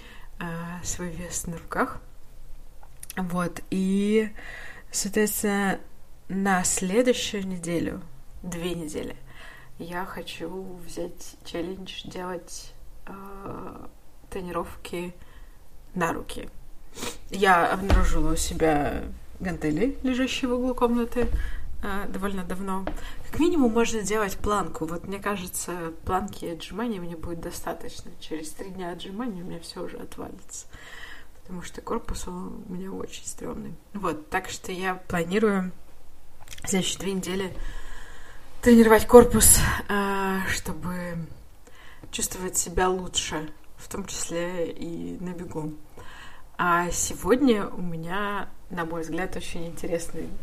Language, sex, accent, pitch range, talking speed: Russian, female, native, 170-200 Hz, 105 wpm